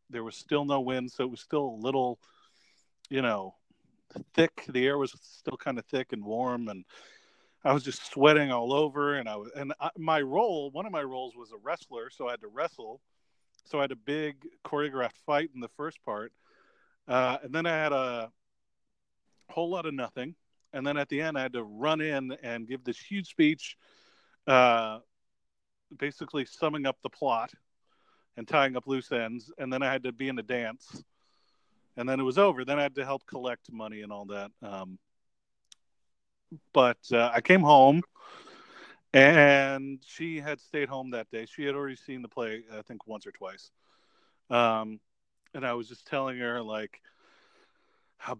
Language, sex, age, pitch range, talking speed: English, male, 40-59, 115-145 Hz, 190 wpm